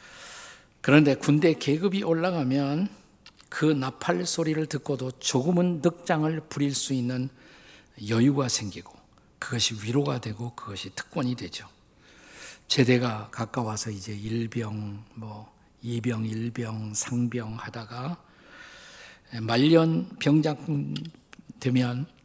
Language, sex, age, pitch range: Korean, male, 50-69, 115-150 Hz